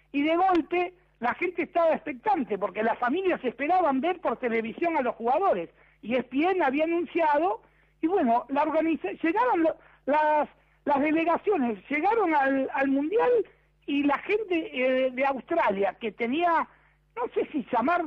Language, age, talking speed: Spanish, 60-79, 155 wpm